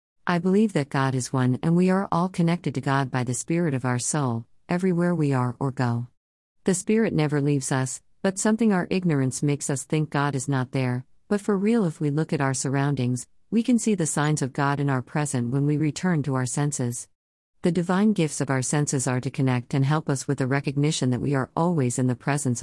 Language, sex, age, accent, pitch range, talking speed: English, female, 50-69, American, 125-160 Hz, 230 wpm